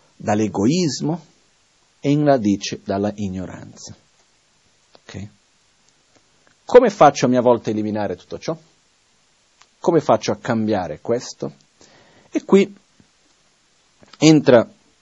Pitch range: 105-145 Hz